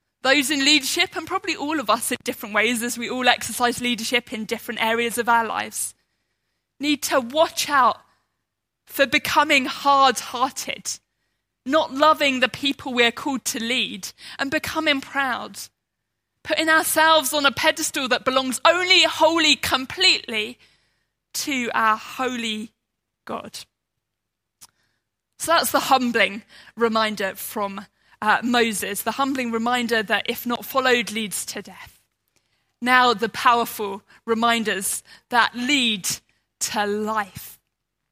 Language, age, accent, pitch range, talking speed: English, 20-39, British, 225-305 Hz, 125 wpm